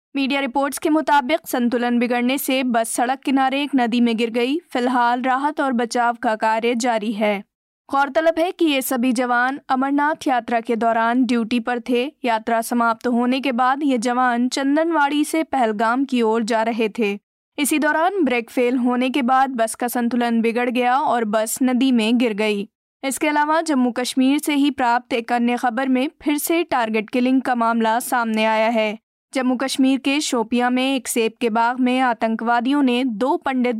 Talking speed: 185 wpm